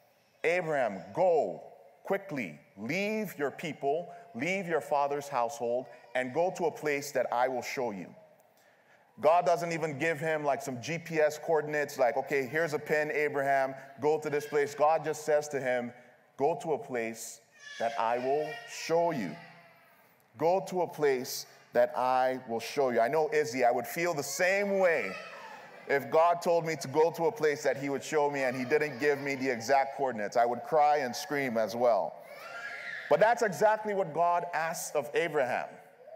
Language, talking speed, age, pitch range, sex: English, 180 wpm, 30-49, 135-170 Hz, male